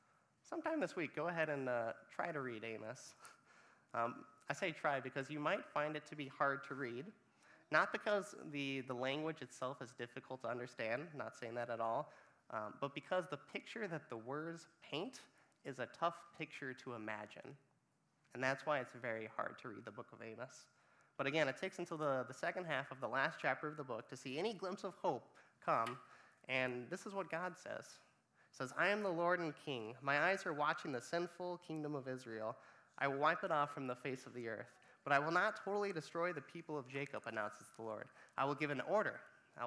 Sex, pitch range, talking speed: male, 130-170 Hz, 215 wpm